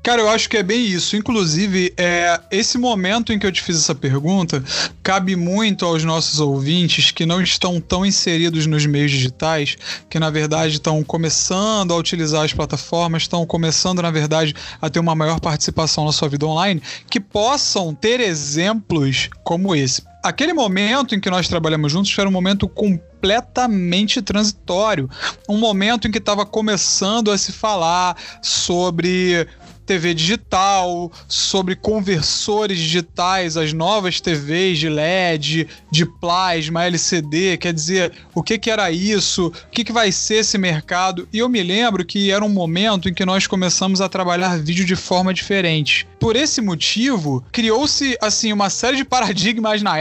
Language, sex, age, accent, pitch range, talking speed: Portuguese, male, 20-39, Brazilian, 165-205 Hz, 160 wpm